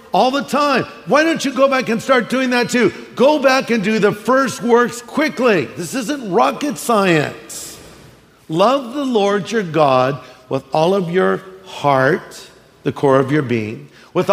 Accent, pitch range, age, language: American, 135-220 Hz, 50-69, English